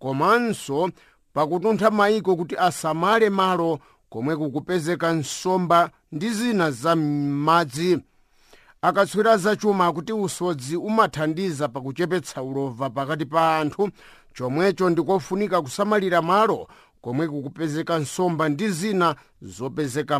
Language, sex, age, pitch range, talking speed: English, male, 50-69, 155-195 Hz, 105 wpm